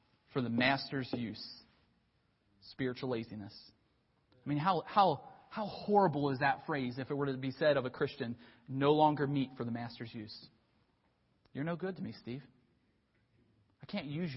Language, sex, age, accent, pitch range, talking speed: English, male, 30-49, American, 135-205 Hz, 165 wpm